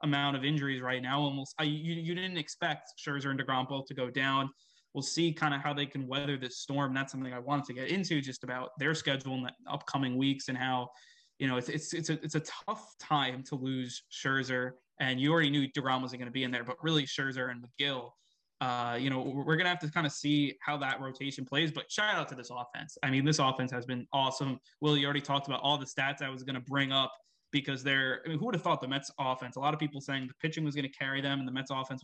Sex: male